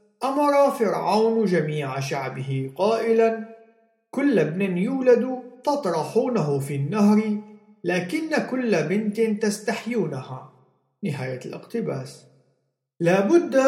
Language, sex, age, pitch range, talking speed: Arabic, male, 50-69, 150-215 Hz, 80 wpm